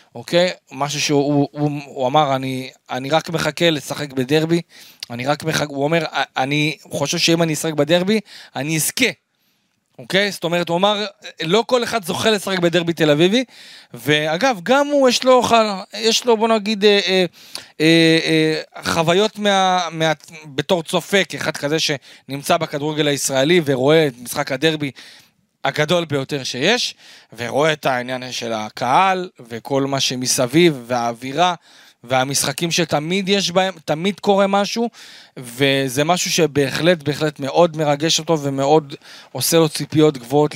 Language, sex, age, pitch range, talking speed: Hebrew, male, 30-49, 145-200 Hz, 145 wpm